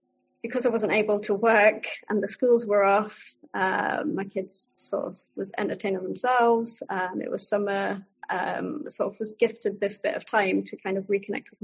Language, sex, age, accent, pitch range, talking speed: English, female, 30-49, British, 195-210 Hz, 190 wpm